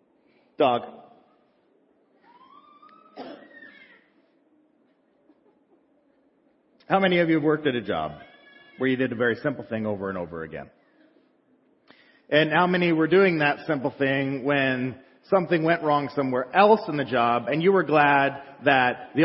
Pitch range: 135-195 Hz